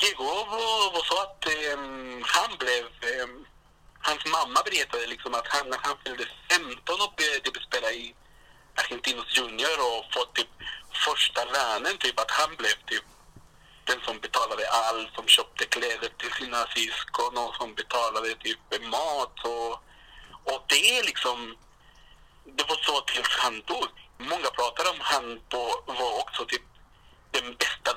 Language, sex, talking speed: Swedish, male, 150 wpm